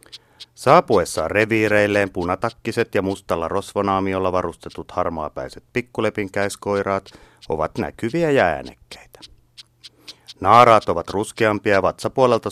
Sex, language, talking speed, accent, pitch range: male, Finnish, 85 wpm, native, 90-110 Hz